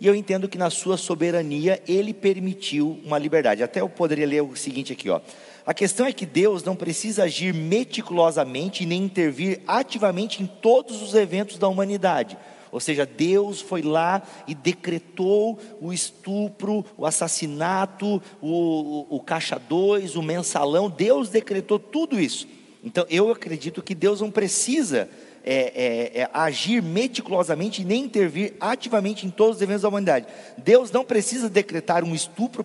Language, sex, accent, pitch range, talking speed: Portuguese, male, Brazilian, 160-215 Hz, 155 wpm